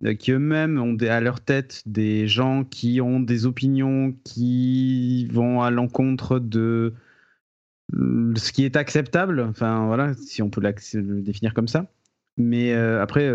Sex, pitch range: male, 120-150 Hz